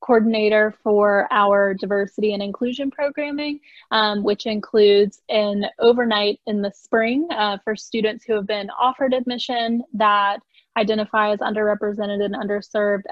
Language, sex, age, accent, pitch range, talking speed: English, female, 20-39, American, 205-235 Hz, 135 wpm